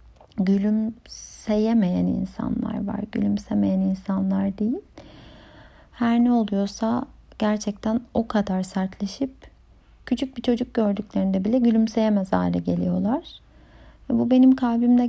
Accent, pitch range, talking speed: native, 200-235 Hz, 95 wpm